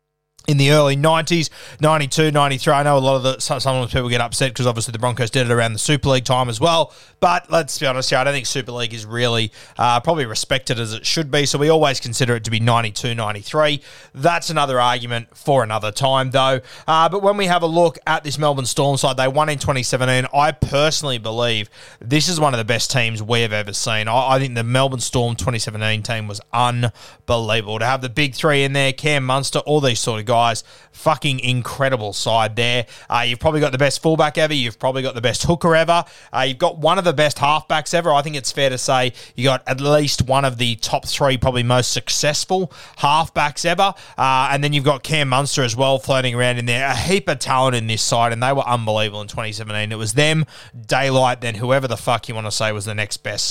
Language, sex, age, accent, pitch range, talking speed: English, male, 20-39, Australian, 120-150 Hz, 235 wpm